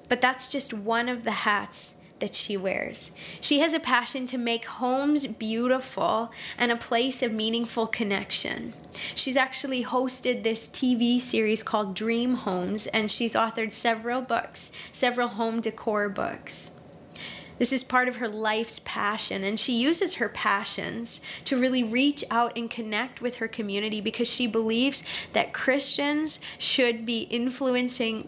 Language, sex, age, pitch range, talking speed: English, female, 20-39, 220-255 Hz, 150 wpm